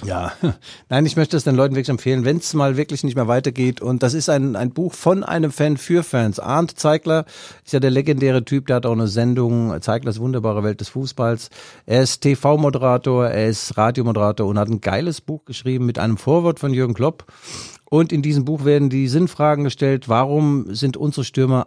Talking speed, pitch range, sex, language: 205 wpm, 120-150 Hz, male, German